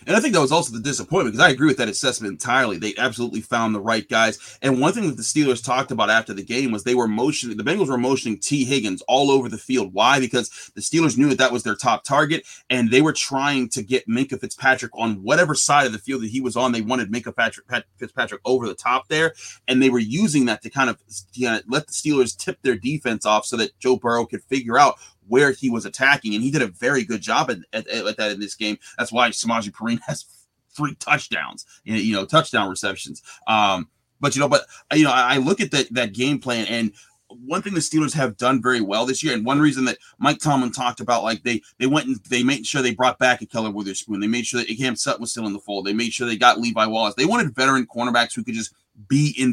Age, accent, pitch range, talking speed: 30-49, American, 110-135 Hz, 255 wpm